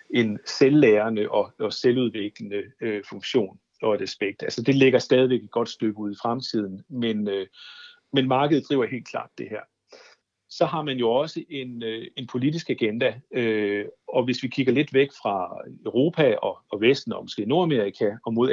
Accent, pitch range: native, 110-145 Hz